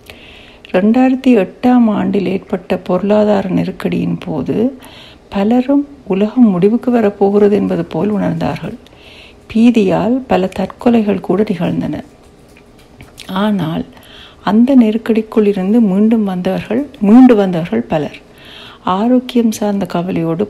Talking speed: 90 wpm